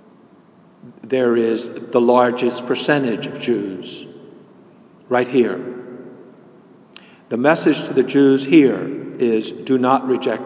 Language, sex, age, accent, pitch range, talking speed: English, male, 50-69, American, 115-130 Hz, 110 wpm